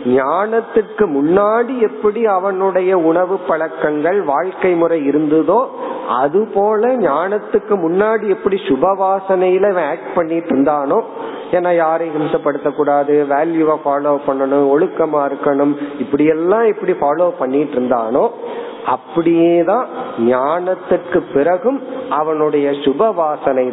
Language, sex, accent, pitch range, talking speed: Tamil, male, native, 145-210 Hz, 90 wpm